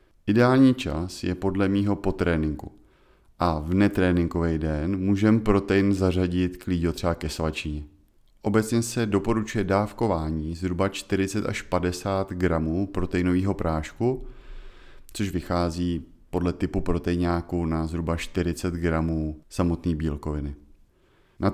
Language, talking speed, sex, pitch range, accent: Czech, 115 wpm, male, 85-105 Hz, native